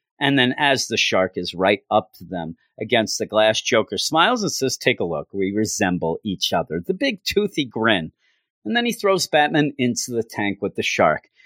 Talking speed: 205 wpm